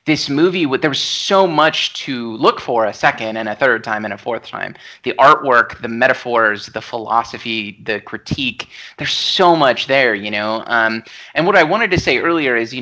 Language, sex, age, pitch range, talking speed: English, male, 30-49, 120-160 Hz, 200 wpm